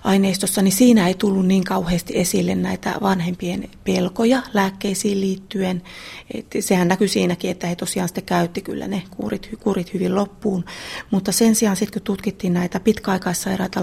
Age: 30-49